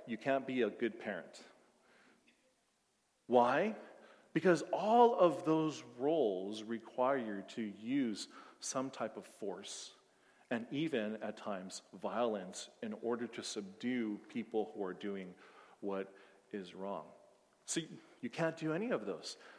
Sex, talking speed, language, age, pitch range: male, 130 wpm, English, 40-59, 110-175 Hz